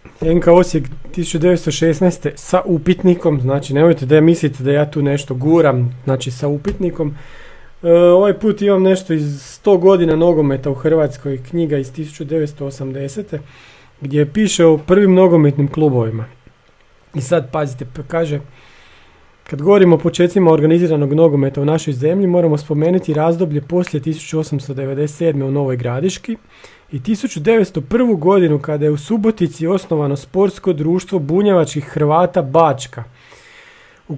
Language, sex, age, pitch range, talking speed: Croatian, male, 40-59, 140-175 Hz, 130 wpm